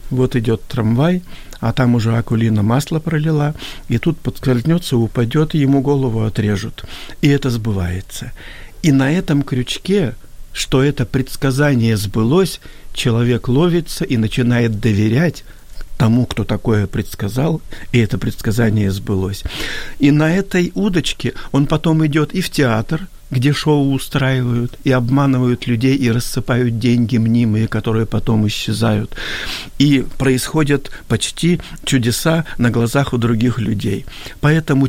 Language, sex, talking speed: Ukrainian, male, 125 wpm